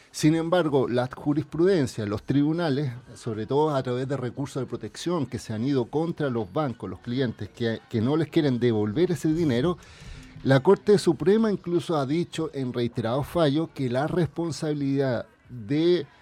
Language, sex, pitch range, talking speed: Spanish, male, 130-170 Hz, 165 wpm